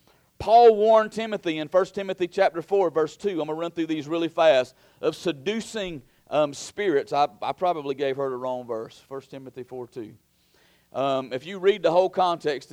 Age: 40-59